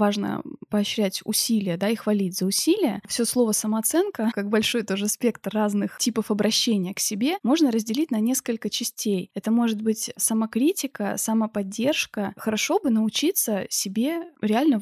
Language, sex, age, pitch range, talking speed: Russian, female, 20-39, 205-245 Hz, 140 wpm